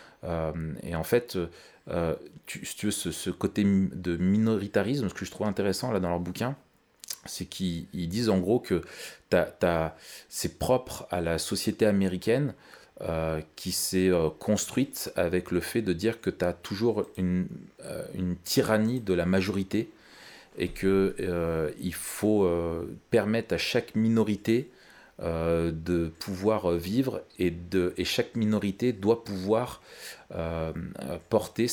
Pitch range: 85-110 Hz